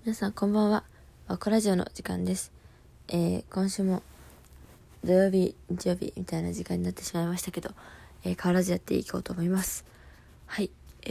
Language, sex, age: Japanese, female, 20-39